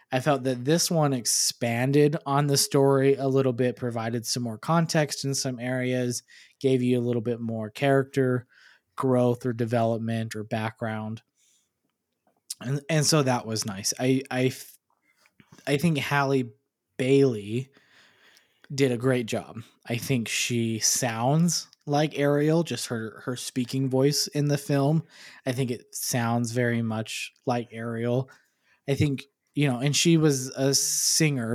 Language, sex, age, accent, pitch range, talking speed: English, male, 20-39, American, 120-140 Hz, 150 wpm